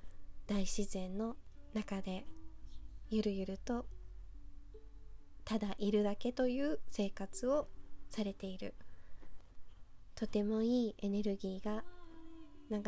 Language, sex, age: Japanese, female, 20-39